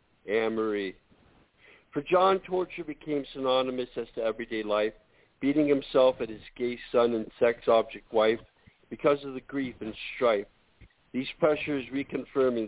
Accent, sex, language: American, male, English